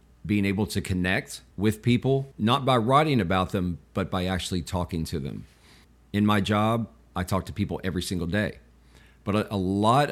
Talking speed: 180 wpm